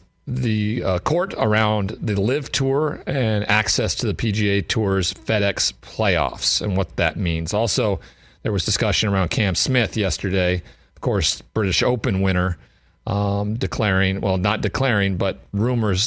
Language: English